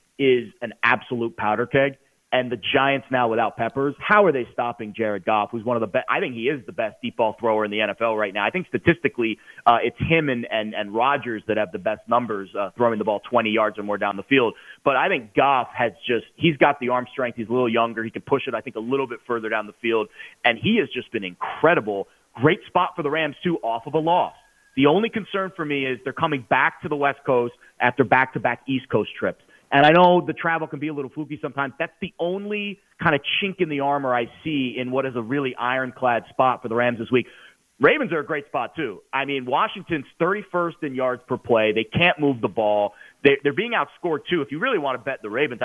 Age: 30-49